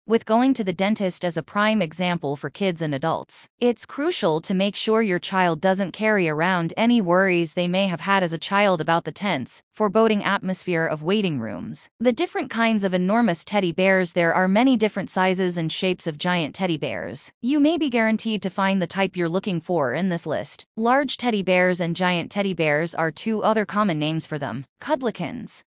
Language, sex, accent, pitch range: English, female, American, 175-225 Hz